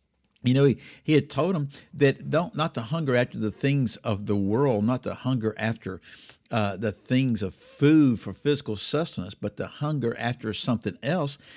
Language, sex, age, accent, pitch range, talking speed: English, male, 50-69, American, 100-135 Hz, 185 wpm